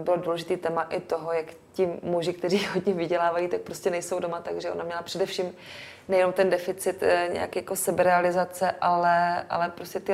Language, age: Czech, 20-39